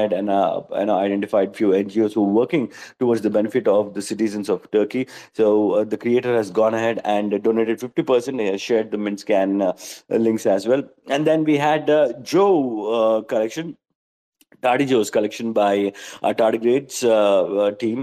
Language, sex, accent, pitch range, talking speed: English, male, Indian, 105-140 Hz, 175 wpm